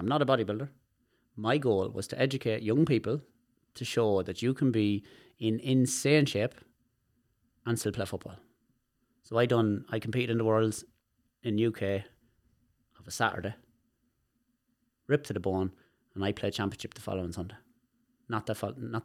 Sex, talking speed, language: male, 165 wpm, English